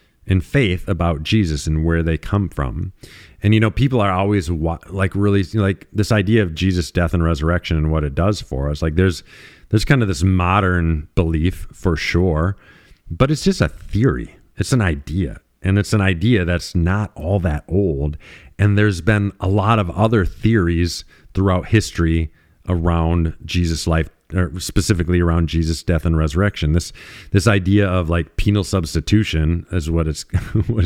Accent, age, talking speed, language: American, 40-59, 175 wpm, English